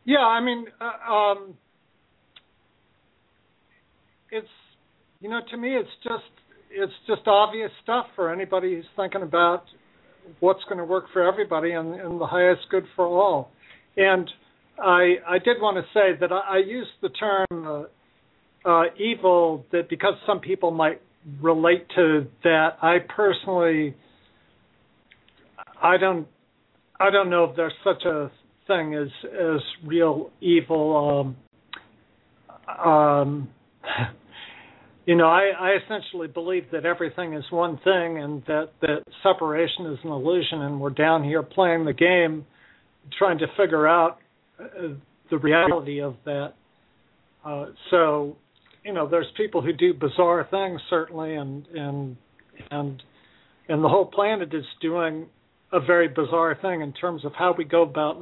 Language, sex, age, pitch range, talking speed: English, male, 60-79, 155-190 Hz, 145 wpm